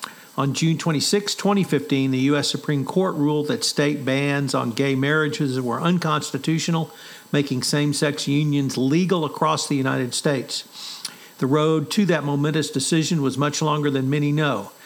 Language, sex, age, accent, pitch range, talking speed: English, male, 50-69, American, 135-160 Hz, 150 wpm